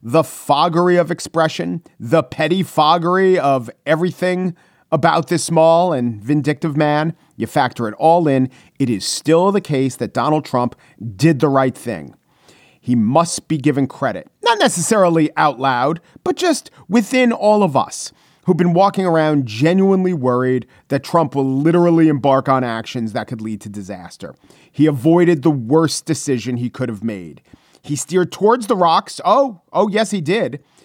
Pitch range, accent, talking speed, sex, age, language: 135-180 Hz, American, 165 wpm, male, 40-59, English